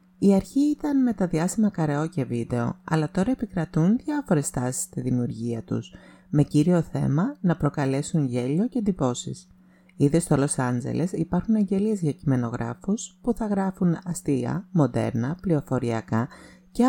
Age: 30-49